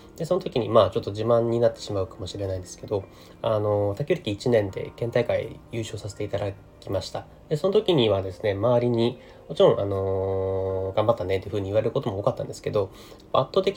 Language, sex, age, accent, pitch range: Japanese, male, 30-49, native, 95-140 Hz